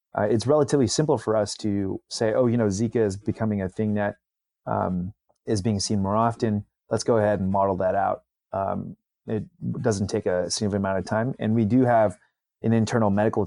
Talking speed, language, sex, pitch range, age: 205 wpm, English, male, 100-120 Hz, 30-49